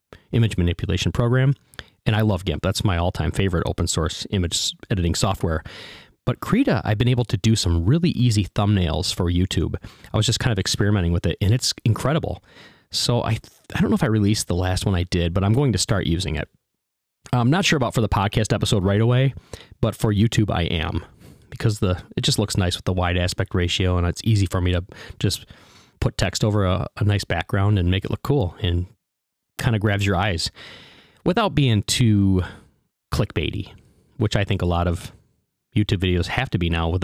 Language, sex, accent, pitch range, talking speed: English, male, American, 90-120 Hz, 205 wpm